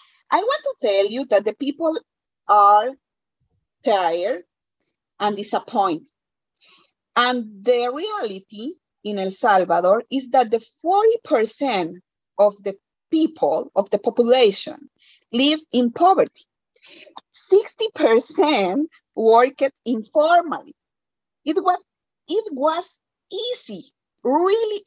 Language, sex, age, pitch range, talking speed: English, female, 40-59, 205-310 Hz, 95 wpm